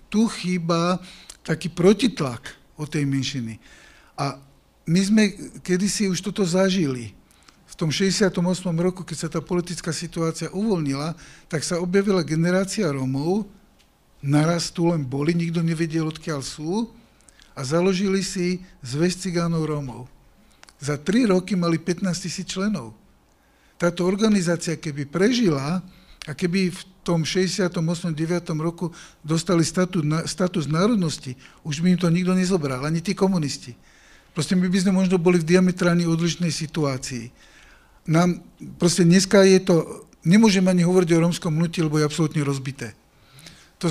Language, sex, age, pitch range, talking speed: Slovak, male, 50-69, 155-185 Hz, 140 wpm